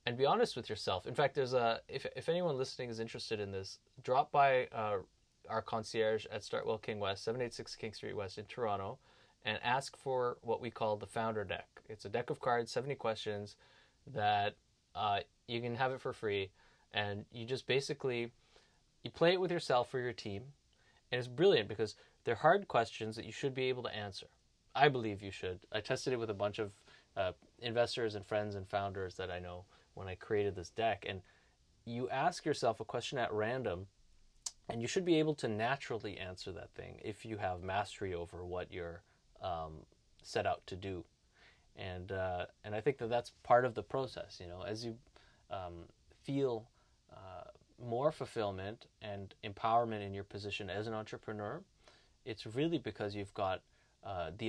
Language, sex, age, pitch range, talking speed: English, male, 20-39, 100-125 Hz, 190 wpm